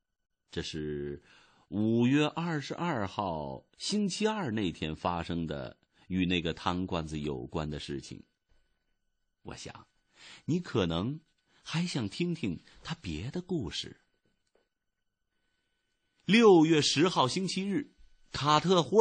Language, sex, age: Chinese, male, 50-69